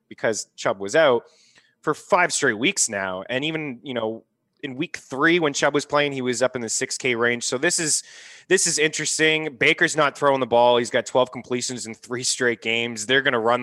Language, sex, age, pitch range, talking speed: English, male, 20-39, 115-145 Hz, 225 wpm